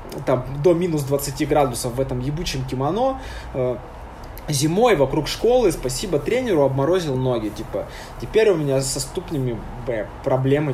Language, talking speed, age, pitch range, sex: Russian, 130 wpm, 20-39, 130-200 Hz, male